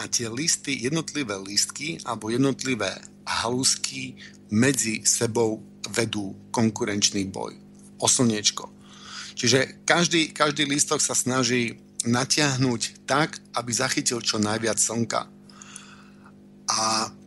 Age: 50-69